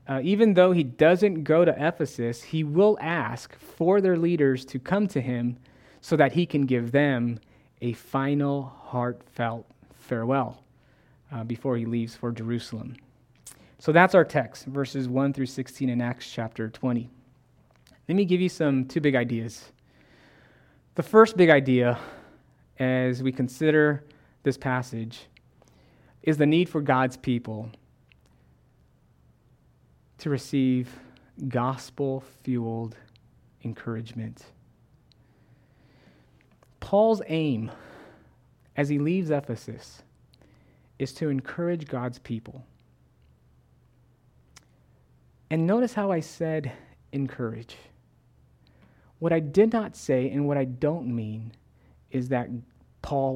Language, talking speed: English, 115 wpm